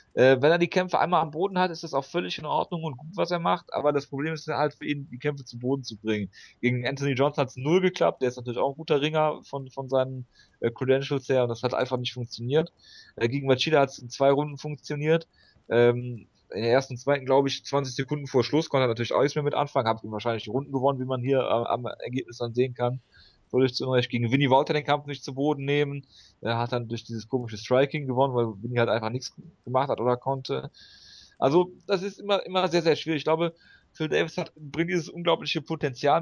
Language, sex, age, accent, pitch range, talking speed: German, male, 30-49, German, 125-150 Hz, 230 wpm